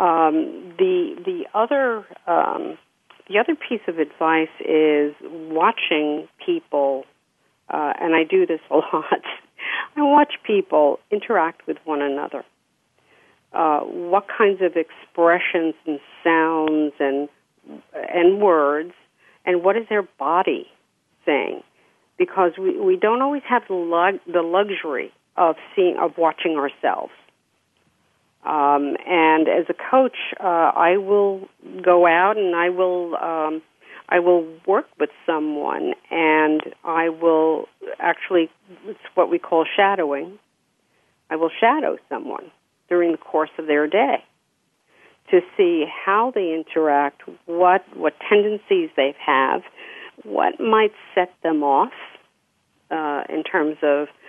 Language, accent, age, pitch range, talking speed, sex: English, American, 50-69, 160-215 Hz, 125 wpm, female